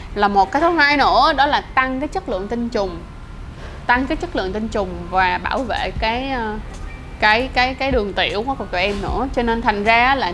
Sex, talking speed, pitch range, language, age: female, 225 wpm, 200-245 Hz, Vietnamese, 20-39